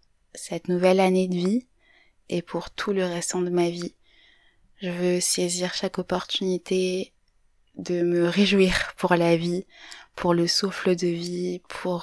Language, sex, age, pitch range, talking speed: French, female, 20-39, 170-185 Hz, 150 wpm